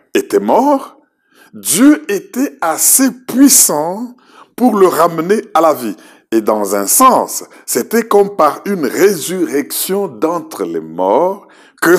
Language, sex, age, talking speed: French, male, 60-79, 125 wpm